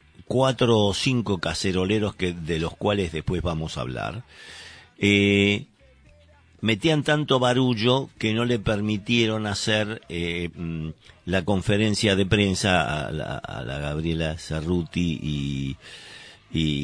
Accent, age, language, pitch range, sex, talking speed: Argentinian, 50-69, Spanish, 85-110 Hz, male, 120 wpm